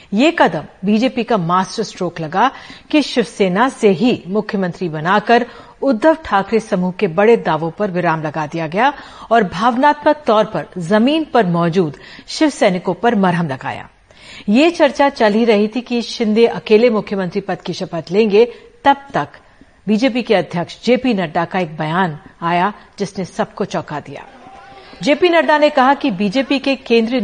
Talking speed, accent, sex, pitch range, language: 160 wpm, native, female, 180-240 Hz, Hindi